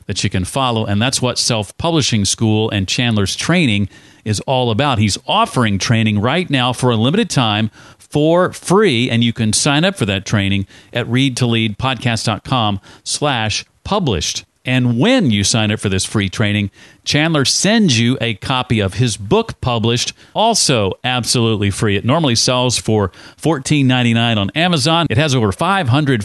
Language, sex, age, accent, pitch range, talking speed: English, male, 40-59, American, 110-135 Hz, 160 wpm